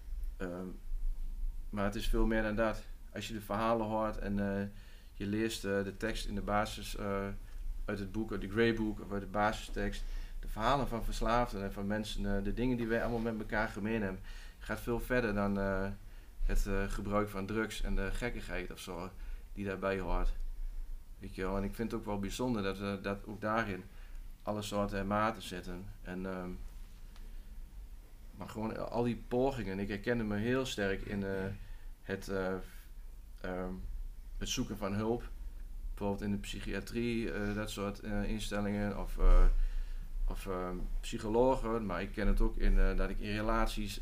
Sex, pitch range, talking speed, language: male, 95-115 Hz, 185 wpm, Dutch